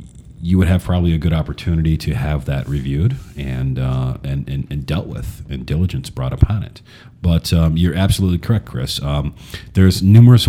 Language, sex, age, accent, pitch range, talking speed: English, male, 40-59, American, 75-105 Hz, 185 wpm